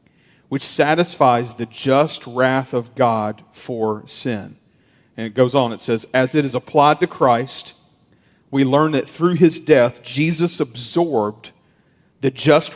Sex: male